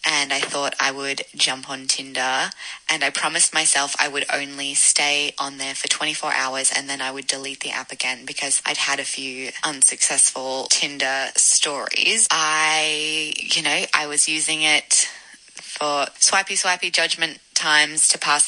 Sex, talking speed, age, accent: female, 165 wpm, 20-39, Australian